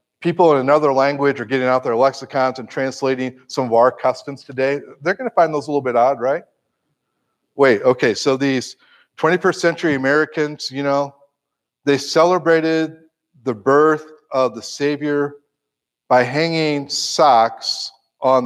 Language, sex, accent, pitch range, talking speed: English, male, American, 130-170 Hz, 150 wpm